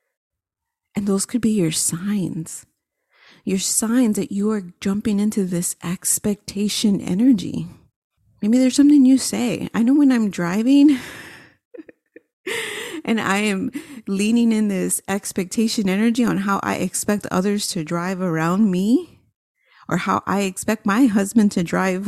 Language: English